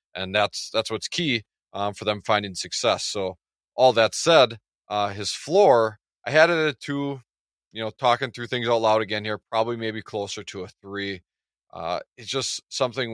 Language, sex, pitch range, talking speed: English, male, 100-115 Hz, 185 wpm